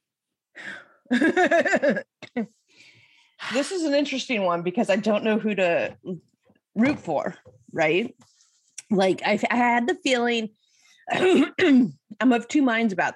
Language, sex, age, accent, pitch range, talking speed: English, female, 30-49, American, 165-240 Hz, 110 wpm